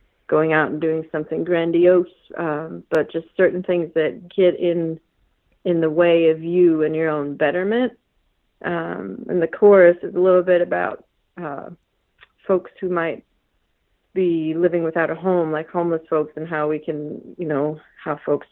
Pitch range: 160-180 Hz